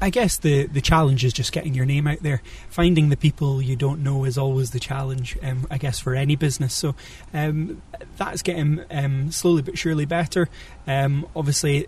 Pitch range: 130-150 Hz